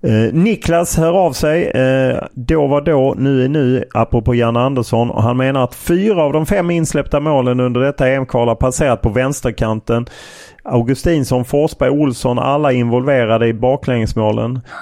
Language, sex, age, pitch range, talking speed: Swedish, male, 30-49, 110-135 Hz, 160 wpm